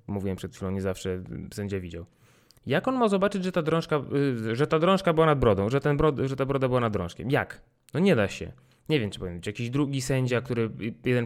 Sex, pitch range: male, 115-150 Hz